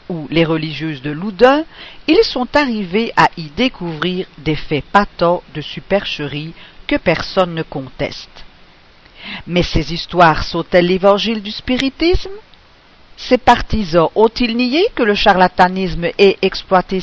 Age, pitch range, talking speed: 50-69, 160-215 Hz, 125 wpm